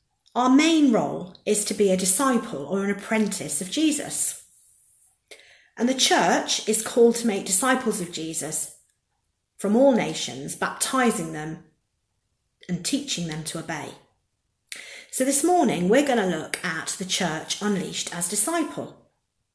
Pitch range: 175-255 Hz